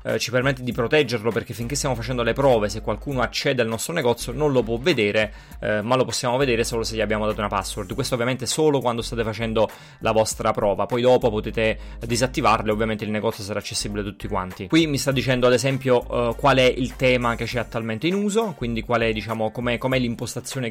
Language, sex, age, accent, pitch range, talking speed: Italian, male, 30-49, native, 115-130 Hz, 215 wpm